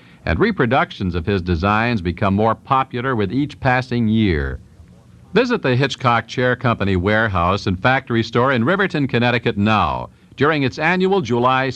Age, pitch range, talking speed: 60-79, 100-130 Hz, 150 wpm